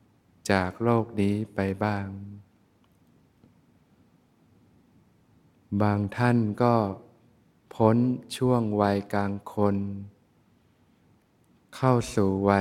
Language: Thai